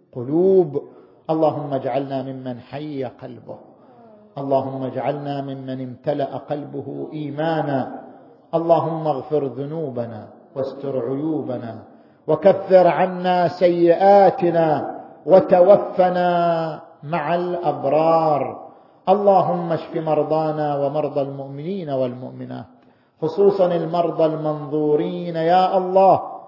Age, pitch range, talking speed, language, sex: 50-69, 130-160 Hz, 75 wpm, Arabic, male